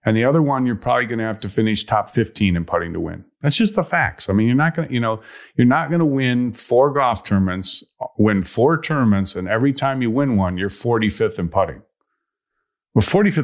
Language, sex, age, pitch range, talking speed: English, male, 50-69, 100-135 Hz, 230 wpm